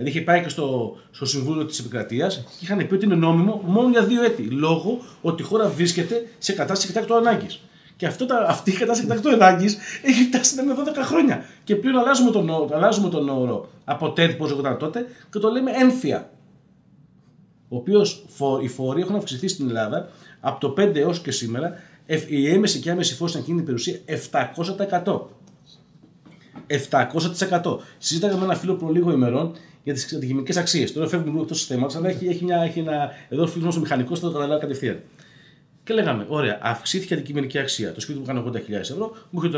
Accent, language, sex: native, Greek, male